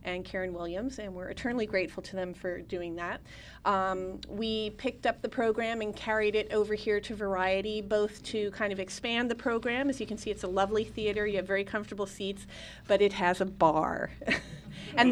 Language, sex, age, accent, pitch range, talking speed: English, female, 30-49, American, 185-215 Hz, 205 wpm